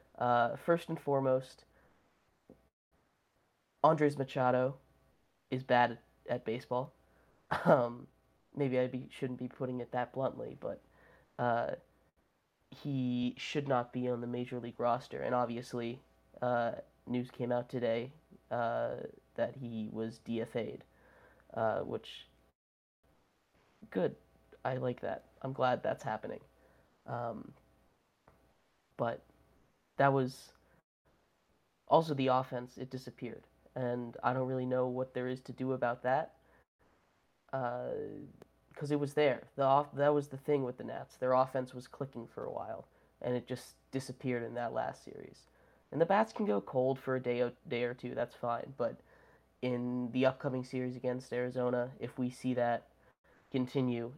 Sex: male